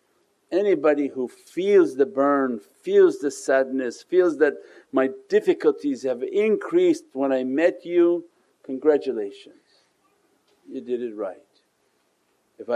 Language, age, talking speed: English, 50-69, 115 wpm